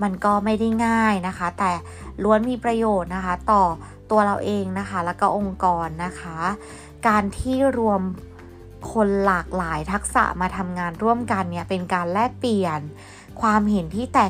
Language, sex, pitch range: Thai, female, 175-210 Hz